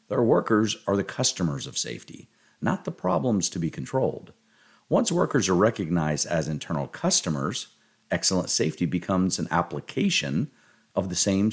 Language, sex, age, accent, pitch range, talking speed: English, male, 50-69, American, 80-125 Hz, 145 wpm